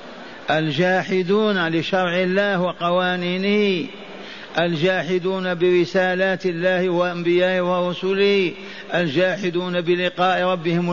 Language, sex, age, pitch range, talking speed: Arabic, male, 50-69, 165-185 Hz, 65 wpm